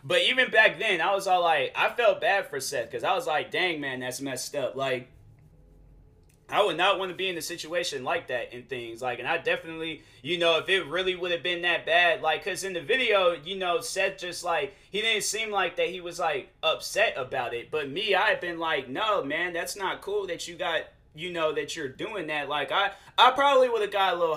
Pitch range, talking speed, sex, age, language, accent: 135-185 Hz, 245 wpm, male, 20-39, English, American